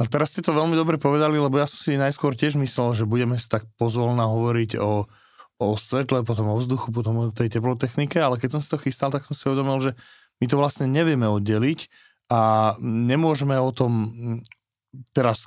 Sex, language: male, English